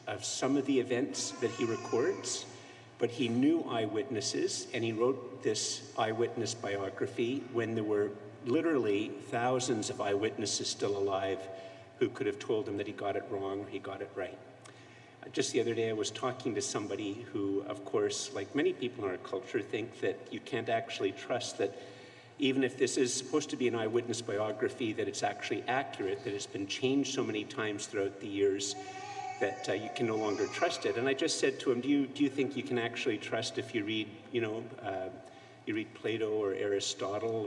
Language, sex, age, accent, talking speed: English, male, 50-69, American, 200 wpm